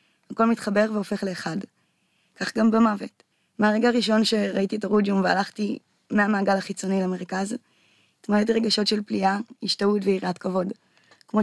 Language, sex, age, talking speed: Hebrew, female, 20-39, 125 wpm